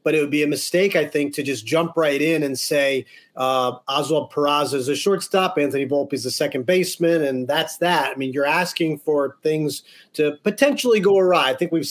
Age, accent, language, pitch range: 30-49, American, English, 145-180 Hz